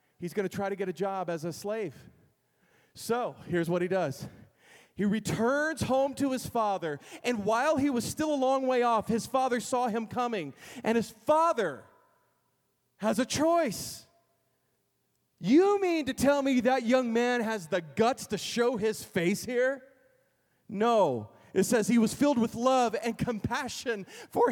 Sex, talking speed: male, 170 wpm